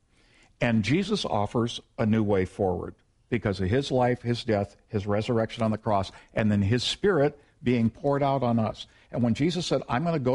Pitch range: 110-135 Hz